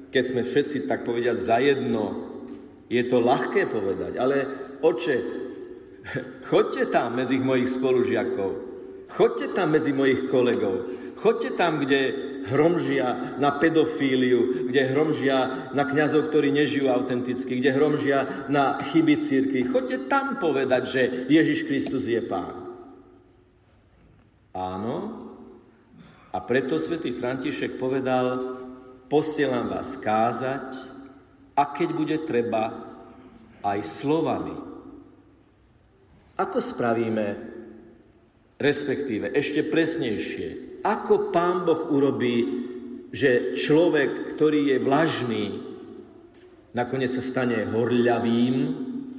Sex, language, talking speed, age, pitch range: male, Slovak, 100 wpm, 50-69, 125-150 Hz